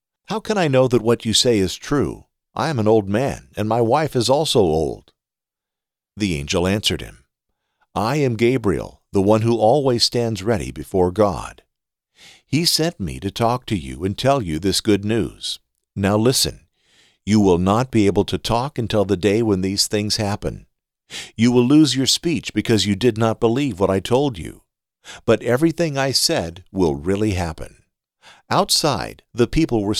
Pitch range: 90-120 Hz